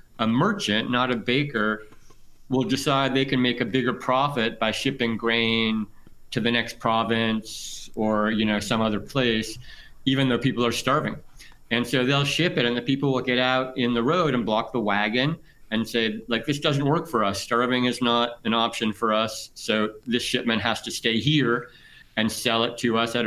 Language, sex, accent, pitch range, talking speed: English, male, American, 115-140 Hz, 200 wpm